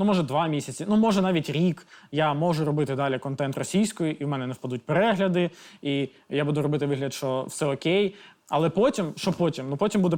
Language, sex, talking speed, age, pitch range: Ukrainian, male, 205 wpm, 20-39, 145-190 Hz